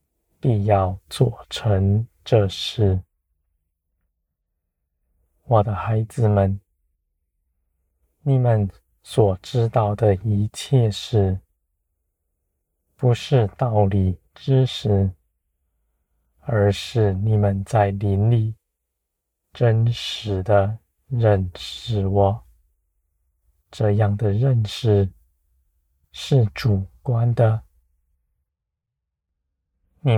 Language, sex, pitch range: Chinese, male, 75-110 Hz